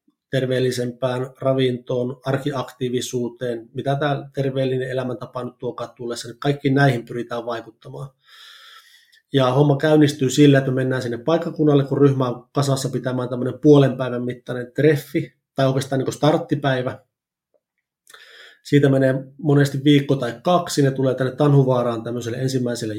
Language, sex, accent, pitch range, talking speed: Finnish, male, native, 120-140 Hz, 130 wpm